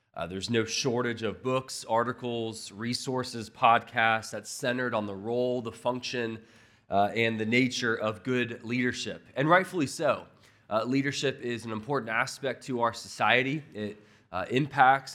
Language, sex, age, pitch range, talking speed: English, male, 20-39, 115-140 Hz, 150 wpm